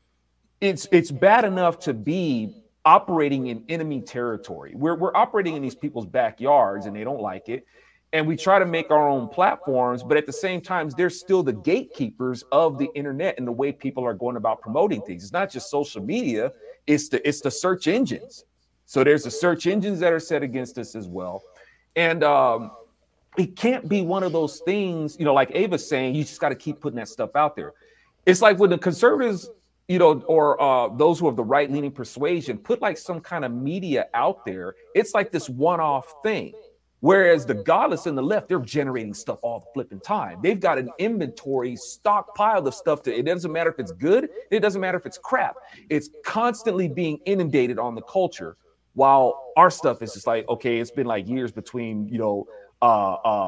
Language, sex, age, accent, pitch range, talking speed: English, male, 40-59, American, 125-195 Hz, 205 wpm